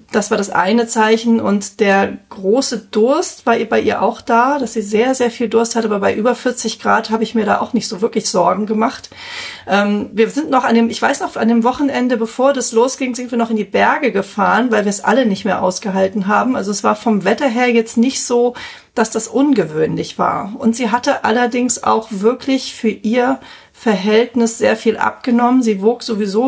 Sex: female